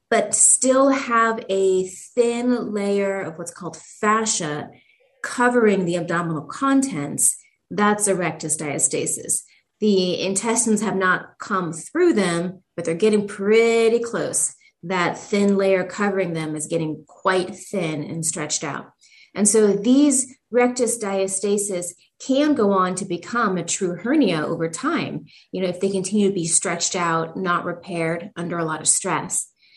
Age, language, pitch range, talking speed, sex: 30-49, English, 170-220 Hz, 145 wpm, female